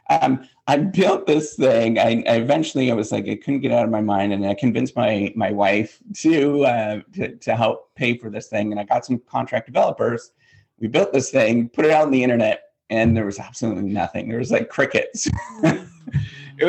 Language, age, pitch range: English, 30-49, 105-130 Hz